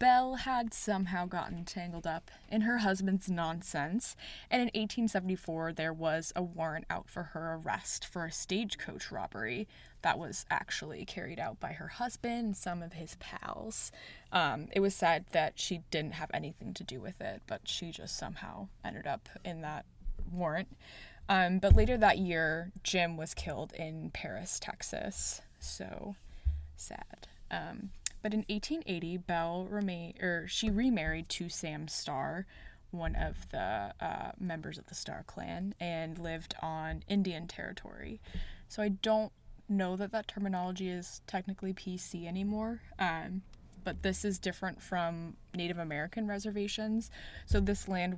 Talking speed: 150 wpm